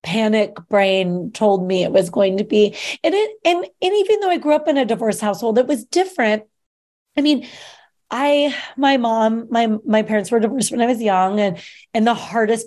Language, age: English, 30-49